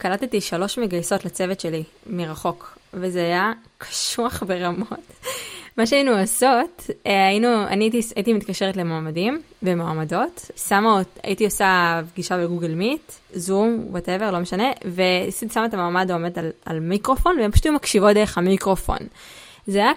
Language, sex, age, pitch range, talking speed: Hebrew, female, 20-39, 180-215 Hz, 125 wpm